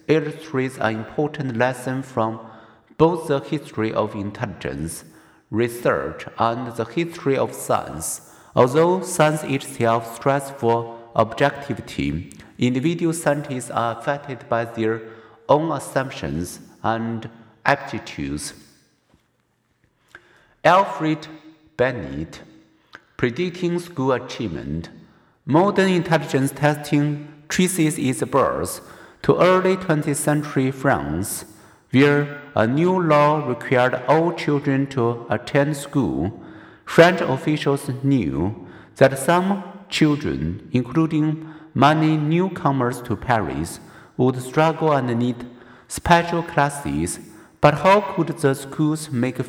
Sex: male